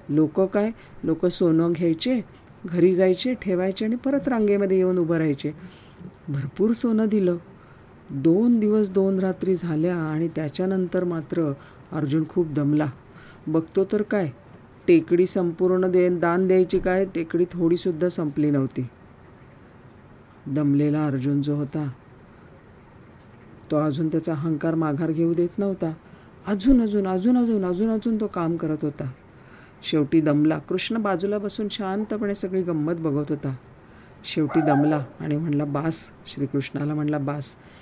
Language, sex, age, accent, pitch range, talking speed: Marathi, female, 50-69, native, 150-190 Hz, 135 wpm